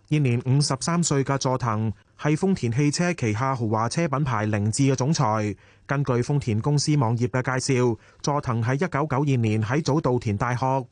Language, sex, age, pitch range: Chinese, male, 20-39, 120-150 Hz